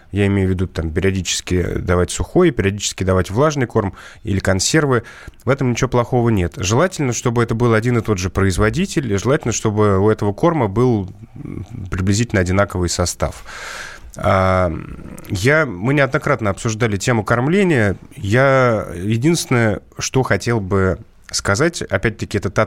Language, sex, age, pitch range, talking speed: Russian, male, 30-49, 95-120 Hz, 130 wpm